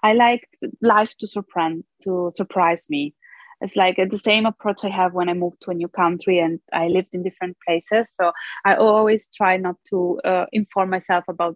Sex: female